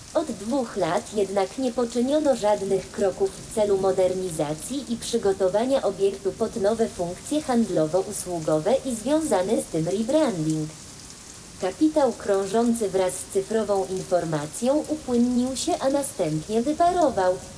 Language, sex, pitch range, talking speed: Polish, female, 185-260 Hz, 115 wpm